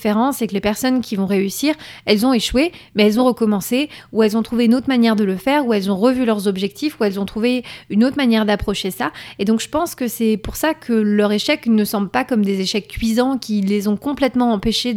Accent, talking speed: French, 250 wpm